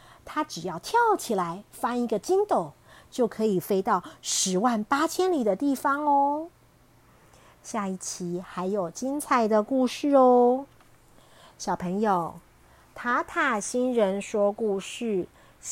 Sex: female